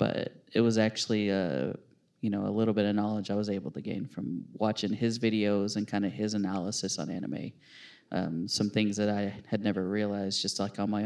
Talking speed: 215 wpm